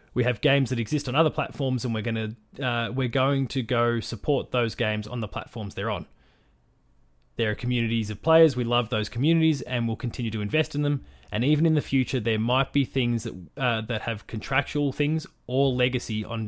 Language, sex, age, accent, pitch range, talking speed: English, male, 20-39, Australian, 105-130 Hz, 215 wpm